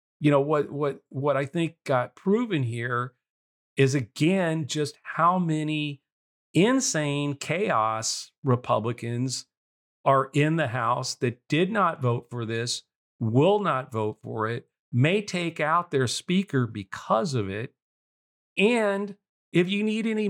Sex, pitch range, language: male, 125-170 Hz, English